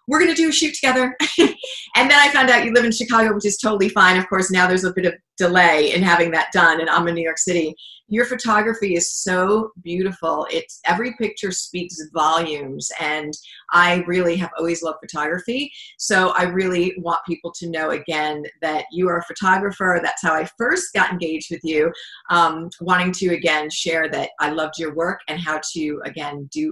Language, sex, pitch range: English, female, 160-225 Hz